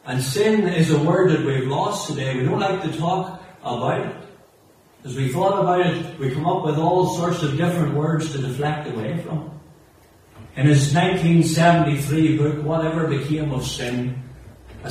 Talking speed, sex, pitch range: 175 wpm, male, 145-185 Hz